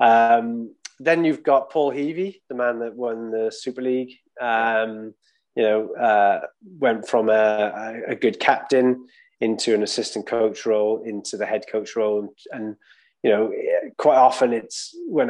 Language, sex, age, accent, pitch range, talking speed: English, male, 20-39, British, 110-135 Hz, 160 wpm